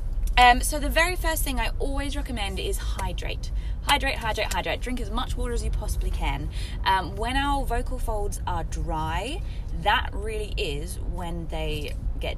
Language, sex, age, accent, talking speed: English, female, 20-39, British, 170 wpm